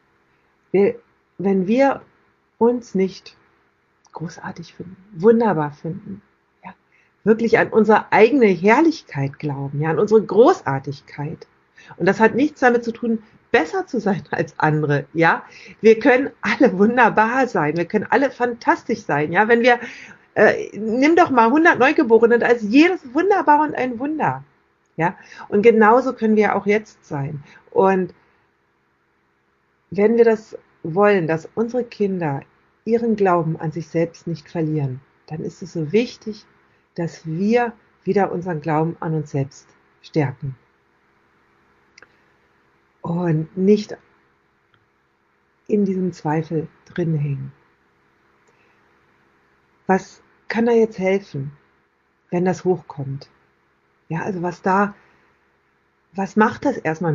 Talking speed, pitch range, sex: 125 wpm, 135-220 Hz, female